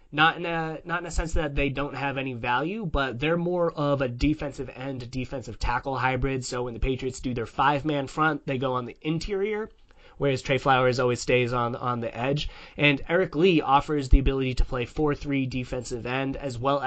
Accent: American